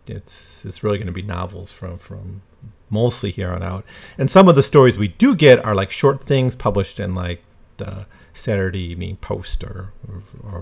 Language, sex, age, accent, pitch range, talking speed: English, male, 40-59, American, 95-125 Hz, 190 wpm